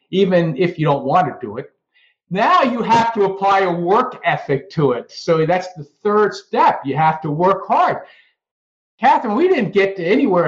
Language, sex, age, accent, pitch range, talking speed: English, male, 50-69, American, 170-230 Hz, 195 wpm